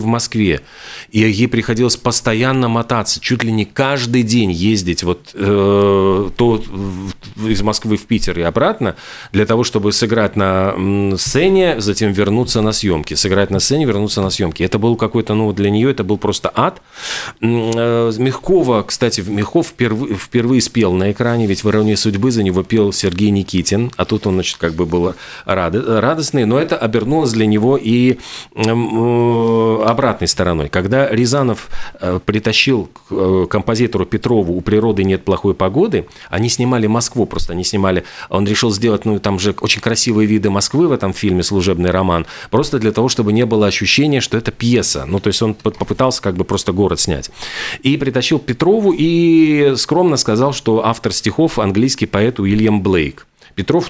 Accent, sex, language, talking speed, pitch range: native, male, Russian, 170 wpm, 100-120 Hz